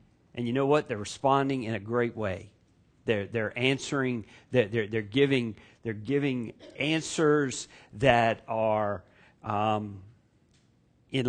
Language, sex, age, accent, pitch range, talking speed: English, male, 50-69, American, 110-130 Hz, 120 wpm